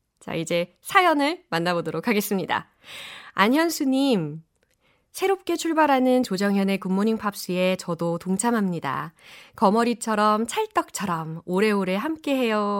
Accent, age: native, 20-39